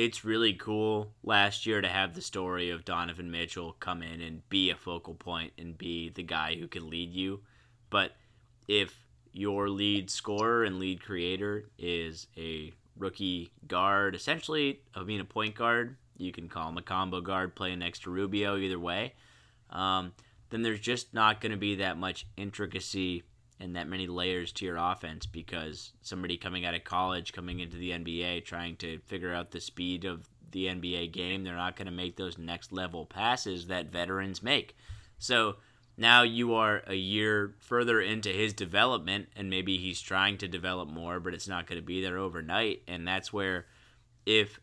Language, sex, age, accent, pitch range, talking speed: English, male, 10-29, American, 90-105 Hz, 185 wpm